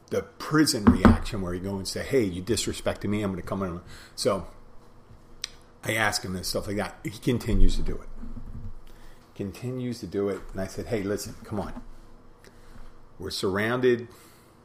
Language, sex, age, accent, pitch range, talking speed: English, male, 40-59, American, 95-115 Hz, 175 wpm